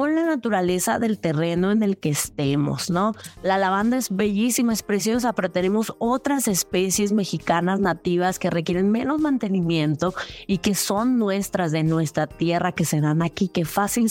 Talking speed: 165 wpm